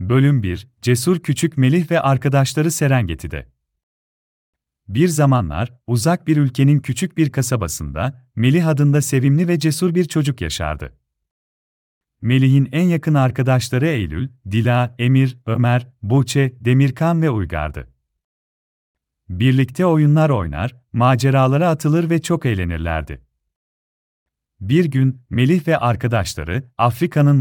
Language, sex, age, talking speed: Turkish, male, 40-59, 110 wpm